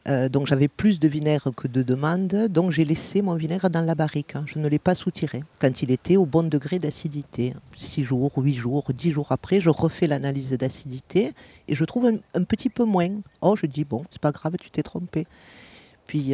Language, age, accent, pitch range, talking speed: French, 40-59, French, 135-175 Hz, 225 wpm